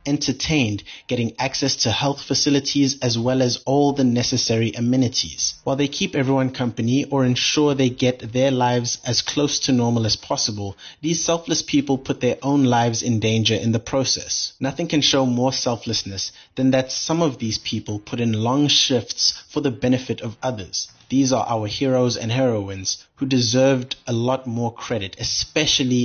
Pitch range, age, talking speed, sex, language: 115-140 Hz, 30-49, 175 wpm, male, English